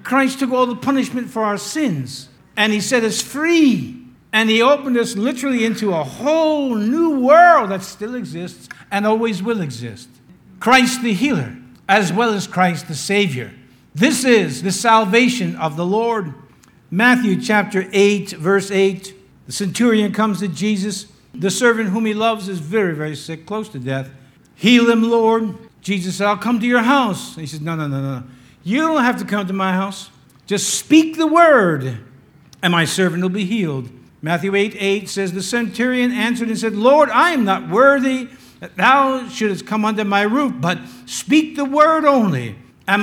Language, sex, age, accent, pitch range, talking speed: English, male, 60-79, American, 155-245 Hz, 180 wpm